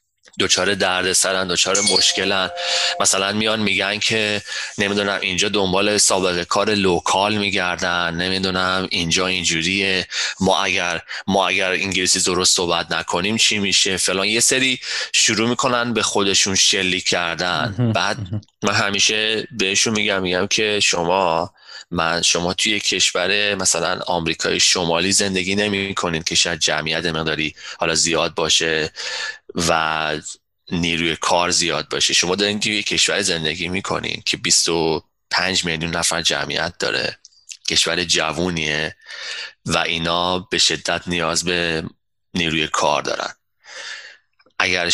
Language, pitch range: Persian, 85-100 Hz